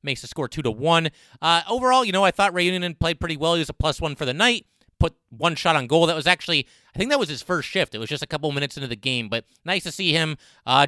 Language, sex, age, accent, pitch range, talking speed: English, male, 30-49, American, 130-165 Hz, 300 wpm